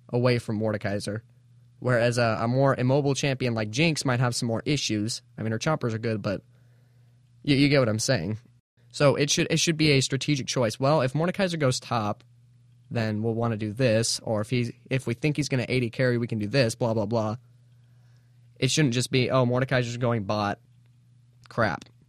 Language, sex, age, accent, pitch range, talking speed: English, male, 10-29, American, 120-135 Hz, 205 wpm